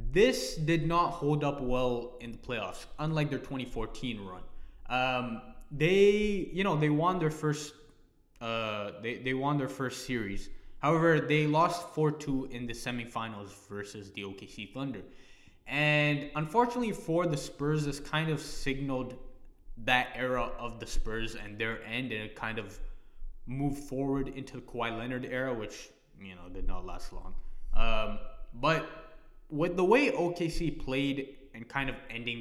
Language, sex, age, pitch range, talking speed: English, male, 20-39, 115-150 Hz, 155 wpm